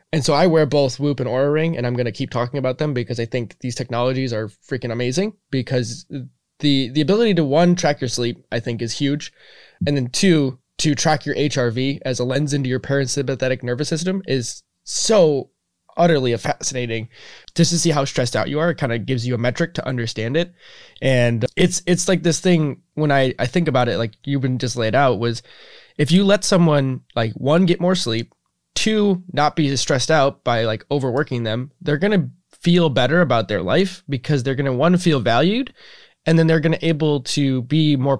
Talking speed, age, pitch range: 215 wpm, 20-39, 125-160 Hz